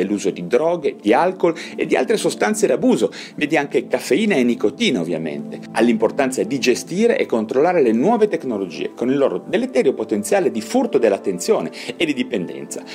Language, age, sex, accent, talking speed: Italian, 30-49, male, native, 160 wpm